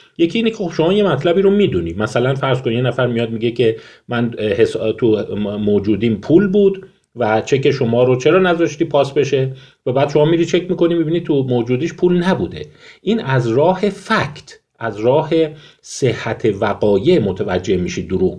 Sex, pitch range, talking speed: male, 115-165 Hz, 165 wpm